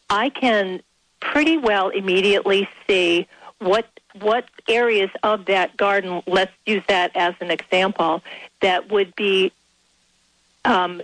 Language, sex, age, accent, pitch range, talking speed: English, female, 50-69, American, 180-220 Hz, 120 wpm